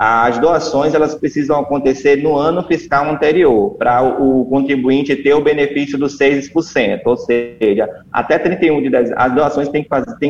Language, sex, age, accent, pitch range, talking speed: Portuguese, male, 20-39, Brazilian, 130-150 Hz, 155 wpm